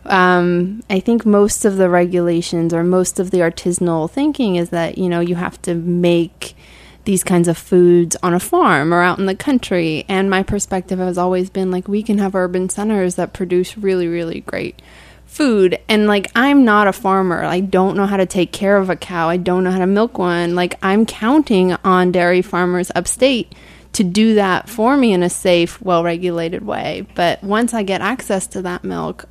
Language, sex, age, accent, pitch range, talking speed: English, female, 20-39, American, 180-200 Hz, 205 wpm